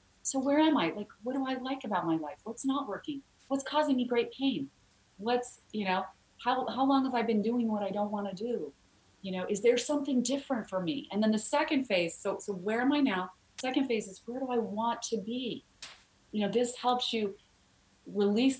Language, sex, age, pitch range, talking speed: English, female, 30-49, 195-250 Hz, 225 wpm